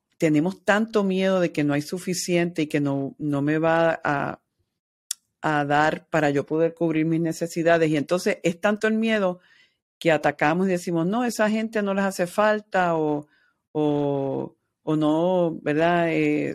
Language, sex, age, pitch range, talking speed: Spanish, female, 50-69, 150-190 Hz, 160 wpm